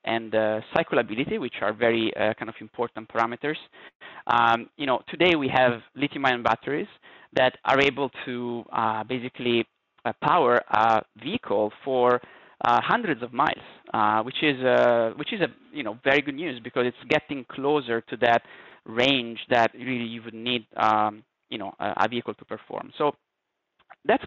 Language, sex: English, male